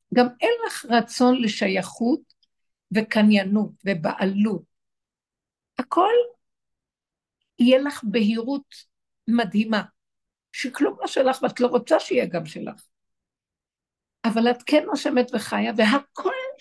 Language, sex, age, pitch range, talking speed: Hebrew, female, 60-79, 205-255 Hz, 100 wpm